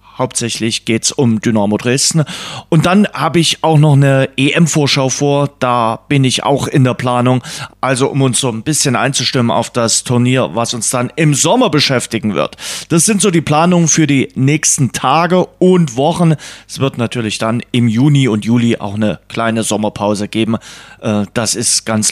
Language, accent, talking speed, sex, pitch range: German, German, 180 wpm, male, 125-165 Hz